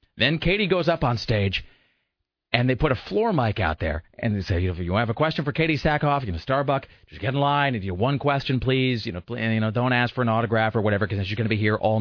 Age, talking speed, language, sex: 40-59, 290 wpm, English, male